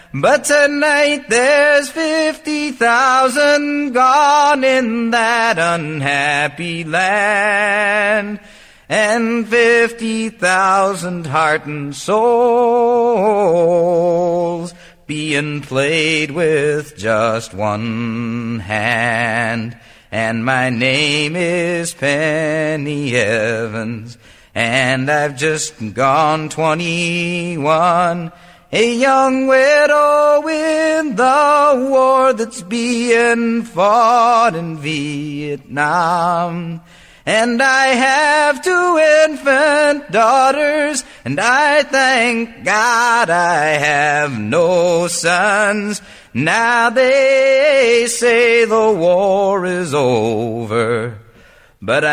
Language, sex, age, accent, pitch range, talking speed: English, male, 40-59, American, 145-240 Hz, 75 wpm